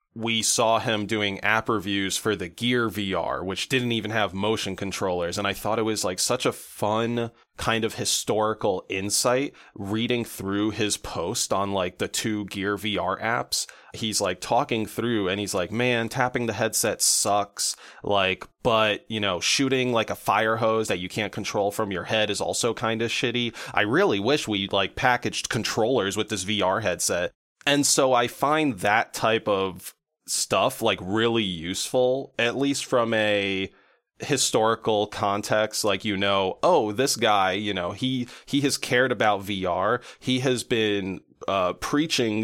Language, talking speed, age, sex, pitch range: English, 170 wpm, 20-39, male, 100-115 Hz